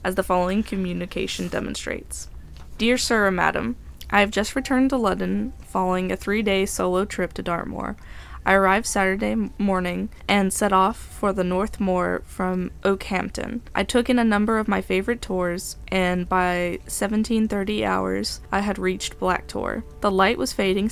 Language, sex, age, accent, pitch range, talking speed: English, female, 10-29, American, 180-215 Hz, 160 wpm